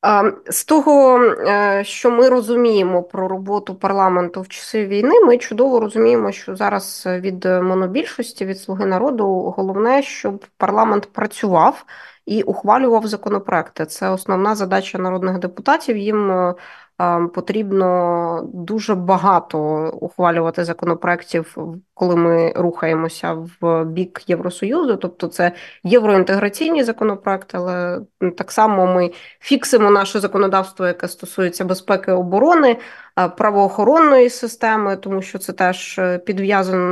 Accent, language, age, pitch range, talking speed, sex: native, Ukrainian, 20-39, 185-235 Hz, 110 wpm, female